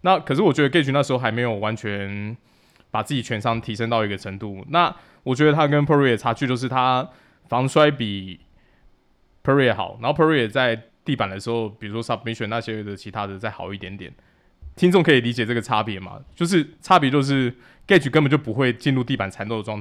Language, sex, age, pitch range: Chinese, male, 20-39, 105-135 Hz